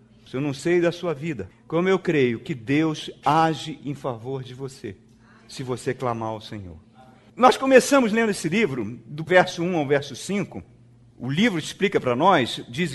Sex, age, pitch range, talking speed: male, 50-69, 140-230 Hz, 175 wpm